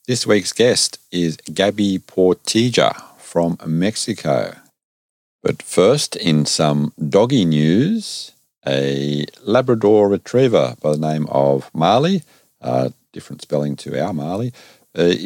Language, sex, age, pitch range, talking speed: English, male, 50-69, 75-105 Hz, 115 wpm